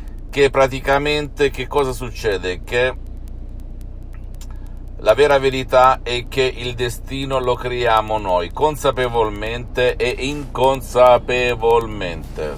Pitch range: 95-125 Hz